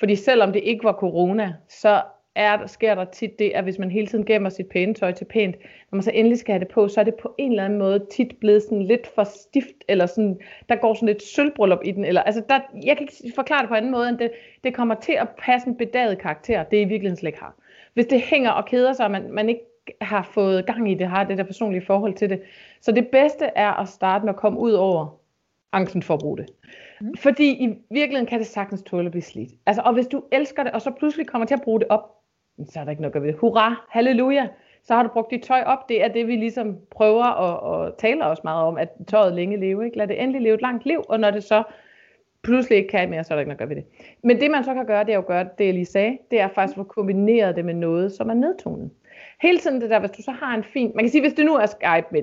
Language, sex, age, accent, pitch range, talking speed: Danish, female, 30-49, native, 195-240 Hz, 275 wpm